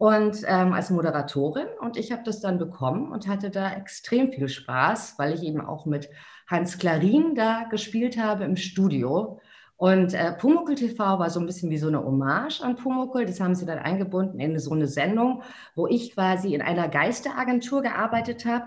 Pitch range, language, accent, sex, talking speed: 150-210 Hz, German, German, female, 185 wpm